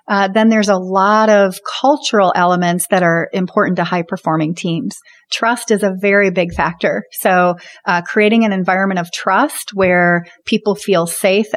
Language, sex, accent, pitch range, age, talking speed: English, female, American, 175-210 Hz, 30-49, 160 wpm